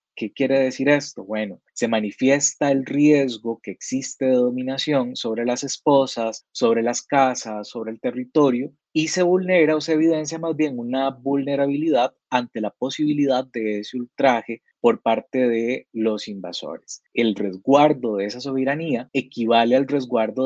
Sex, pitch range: male, 115-150 Hz